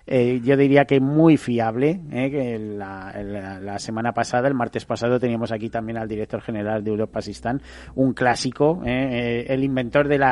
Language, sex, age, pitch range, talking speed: Spanish, male, 40-59, 110-135 Hz, 190 wpm